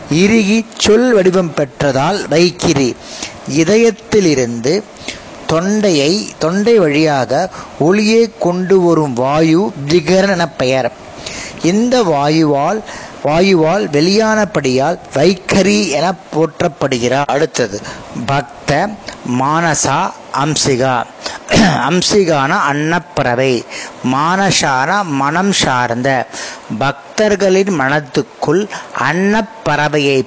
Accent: native